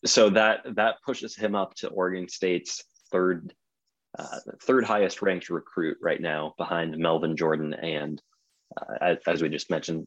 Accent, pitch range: American, 85-105 Hz